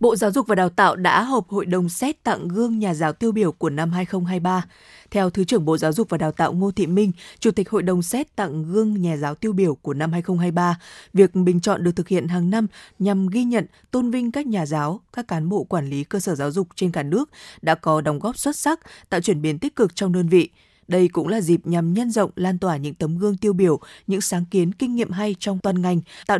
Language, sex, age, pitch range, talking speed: Vietnamese, female, 20-39, 170-210 Hz, 255 wpm